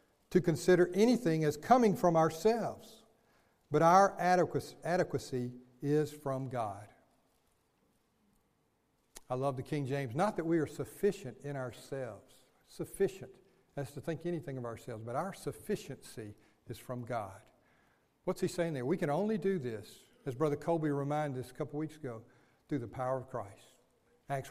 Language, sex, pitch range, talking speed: English, male, 135-170 Hz, 150 wpm